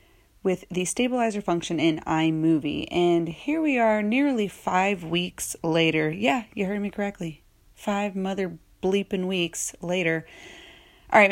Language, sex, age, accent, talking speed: English, female, 30-49, American, 140 wpm